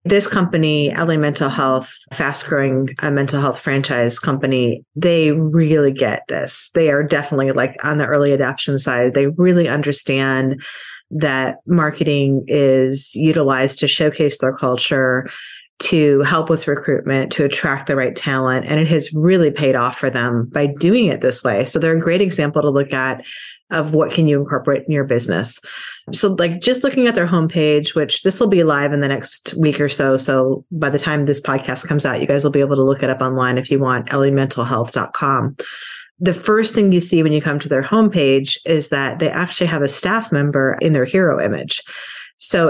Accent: American